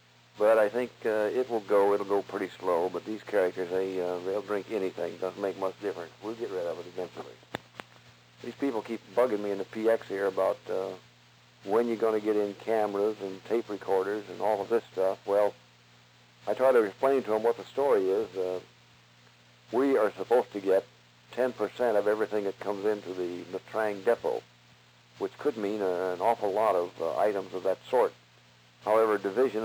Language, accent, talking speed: English, American, 195 wpm